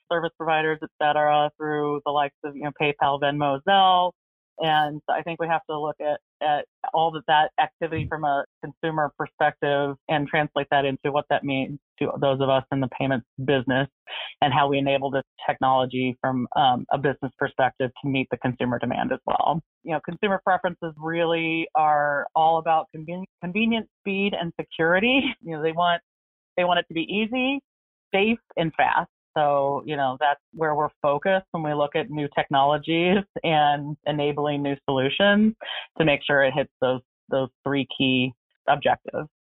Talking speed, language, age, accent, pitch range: 175 wpm, English, 30-49, American, 140-165 Hz